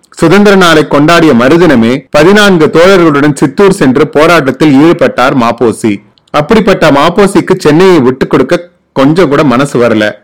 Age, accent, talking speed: 30-49, native, 115 wpm